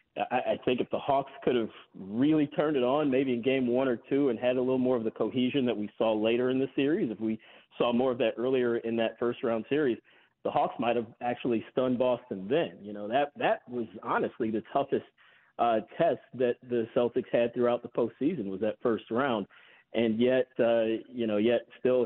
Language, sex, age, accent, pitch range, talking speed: English, male, 40-59, American, 110-125 Hz, 215 wpm